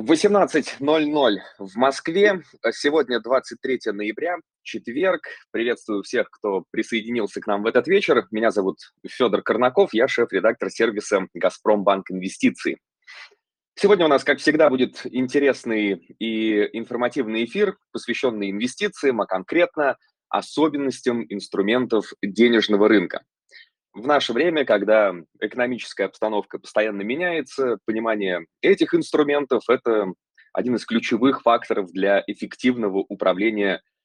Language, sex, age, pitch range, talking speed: Russian, male, 20-39, 105-155 Hz, 110 wpm